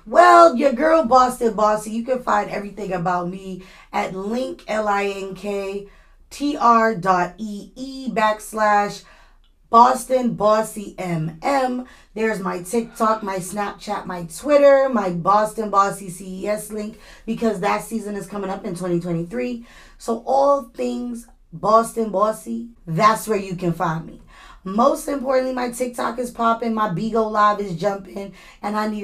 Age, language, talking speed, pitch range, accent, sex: 20-39, English, 135 wpm, 195-245 Hz, American, female